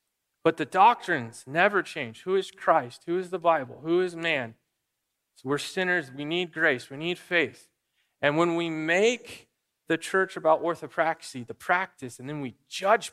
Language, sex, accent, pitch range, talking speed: English, male, American, 140-210 Hz, 170 wpm